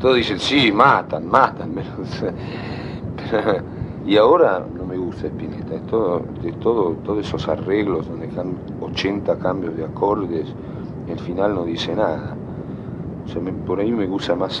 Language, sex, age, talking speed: Spanish, male, 50-69, 170 wpm